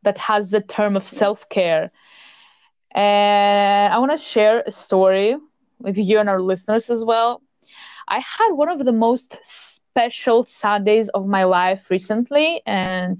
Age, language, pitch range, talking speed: 20-39, English, 205-245 Hz, 150 wpm